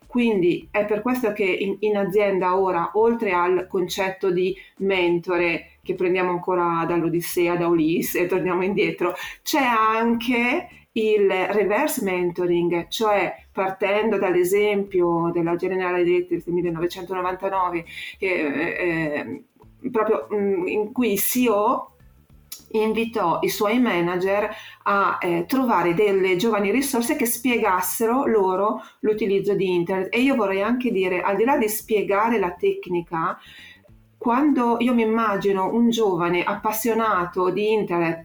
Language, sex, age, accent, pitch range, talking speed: Italian, female, 40-59, native, 180-220 Hz, 125 wpm